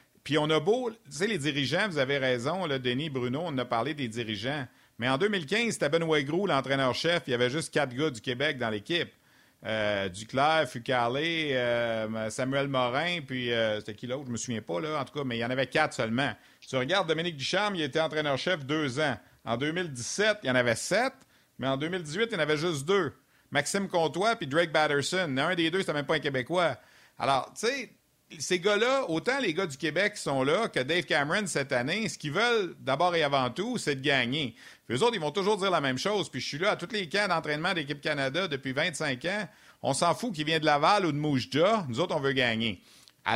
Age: 50-69